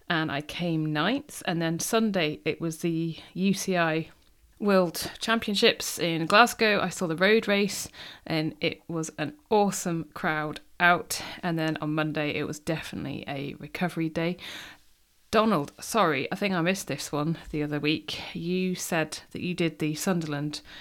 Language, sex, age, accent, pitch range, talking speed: English, female, 40-59, British, 150-185 Hz, 160 wpm